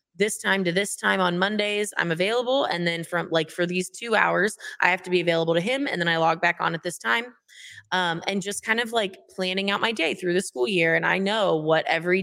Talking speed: 255 wpm